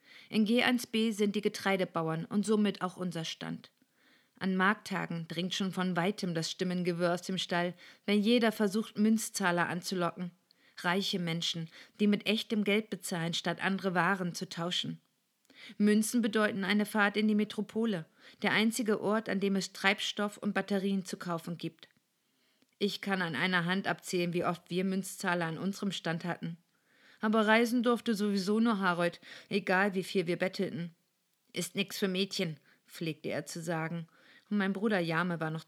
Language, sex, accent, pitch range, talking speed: German, female, German, 175-210 Hz, 160 wpm